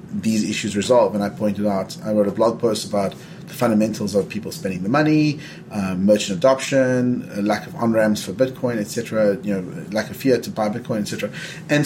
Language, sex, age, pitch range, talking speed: English, male, 30-49, 110-160 Hz, 195 wpm